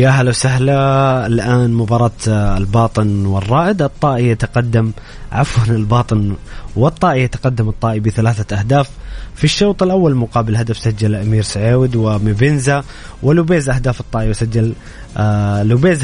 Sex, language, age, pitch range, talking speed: male, Arabic, 20-39, 110-130 Hz, 110 wpm